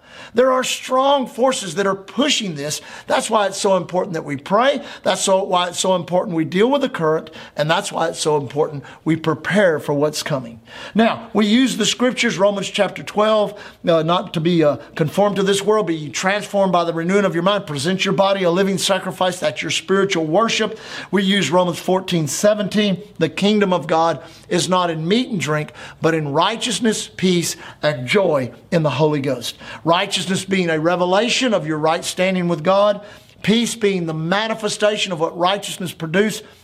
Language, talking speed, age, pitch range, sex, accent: English, 190 wpm, 50-69, 165-215 Hz, male, American